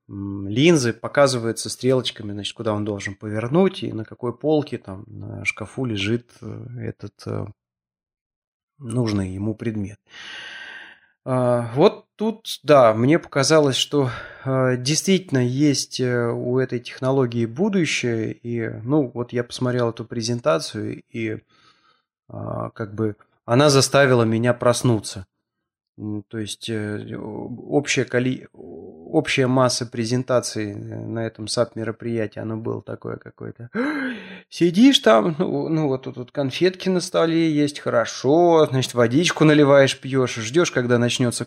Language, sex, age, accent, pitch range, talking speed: Russian, male, 20-39, native, 115-145 Hz, 115 wpm